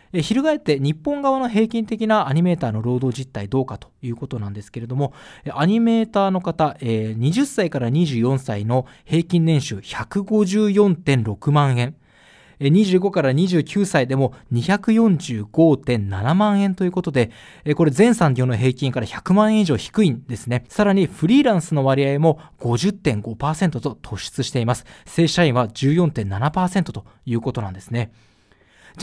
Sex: male